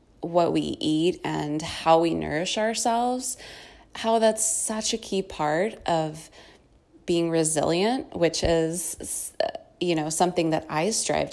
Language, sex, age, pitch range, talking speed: English, female, 20-39, 155-185 Hz, 130 wpm